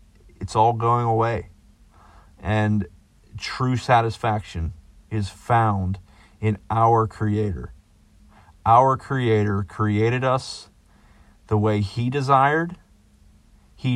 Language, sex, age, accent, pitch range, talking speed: English, male, 40-59, American, 100-120 Hz, 90 wpm